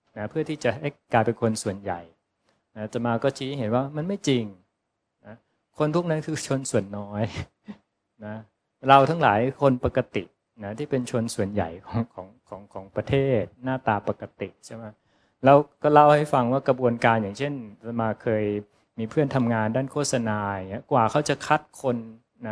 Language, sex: English, male